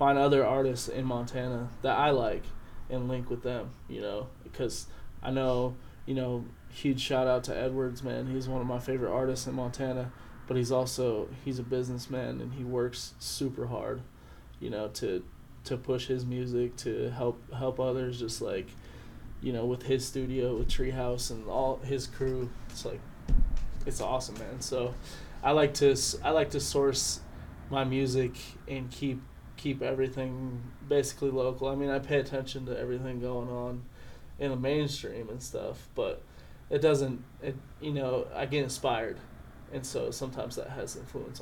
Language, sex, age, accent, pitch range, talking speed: English, male, 20-39, American, 125-135 Hz, 170 wpm